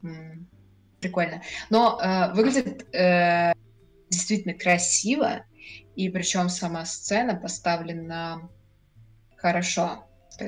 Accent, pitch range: native, 165-195 Hz